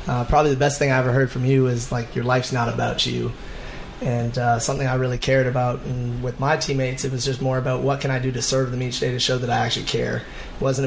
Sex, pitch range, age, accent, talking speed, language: male, 125-135 Hz, 20-39, American, 275 wpm, English